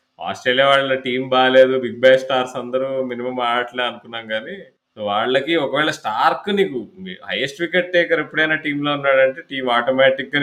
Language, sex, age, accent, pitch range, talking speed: Telugu, male, 20-39, native, 105-130 Hz, 145 wpm